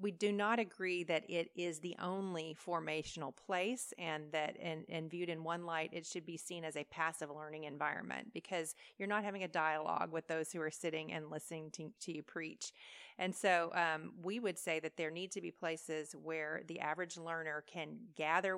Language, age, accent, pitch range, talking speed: English, 40-59, American, 160-180 Hz, 205 wpm